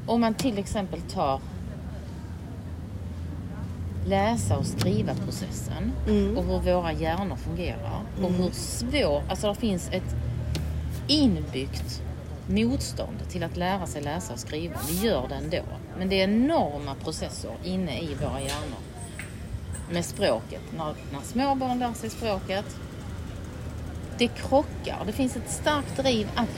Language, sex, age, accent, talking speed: Swedish, female, 30-49, native, 135 wpm